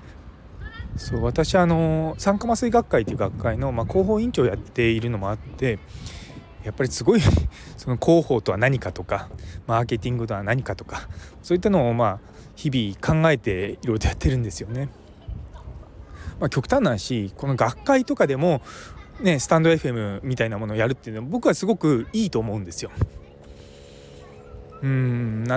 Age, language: 20-39, Japanese